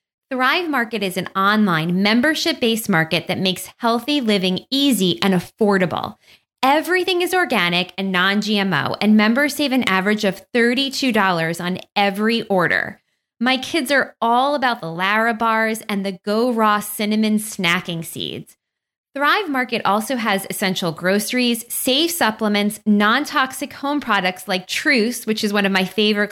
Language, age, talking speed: English, 20-39, 145 wpm